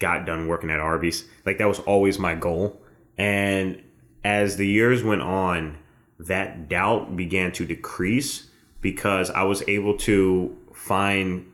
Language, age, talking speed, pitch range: English, 20-39, 145 wpm, 90-100 Hz